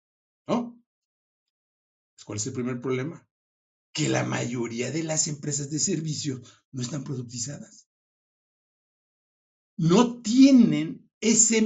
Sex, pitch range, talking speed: male, 120-180 Hz, 105 wpm